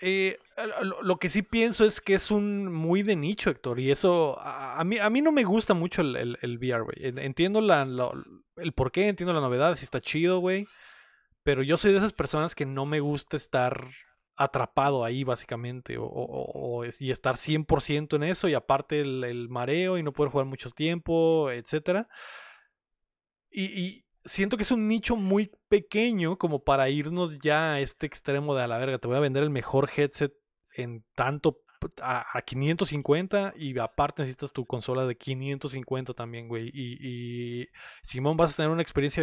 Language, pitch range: Spanish, 130-180 Hz